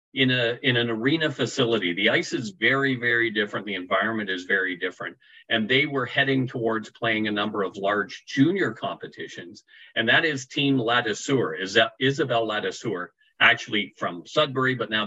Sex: male